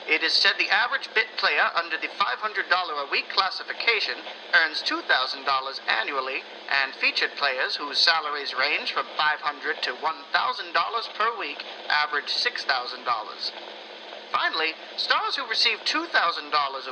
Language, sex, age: English, male, 40-59